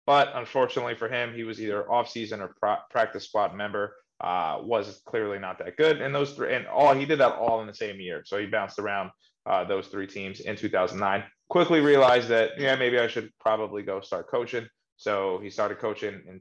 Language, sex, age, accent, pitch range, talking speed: English, male, 20-39, American, 110-150 Hz, 210 wpm